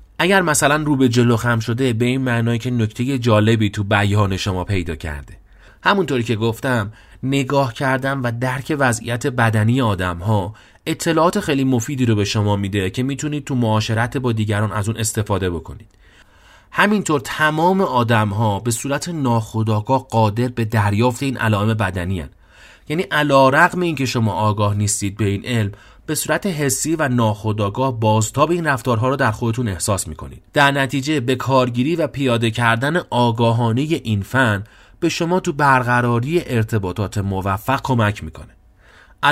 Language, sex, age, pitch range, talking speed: Persian, male, 30-49, 105-140 Hz, 155 wpm